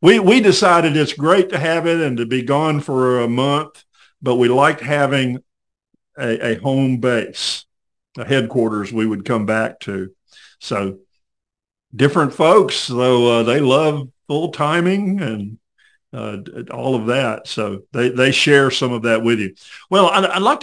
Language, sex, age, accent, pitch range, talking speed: English, male, 50-69, American, 120-160 Hz, 165 wpm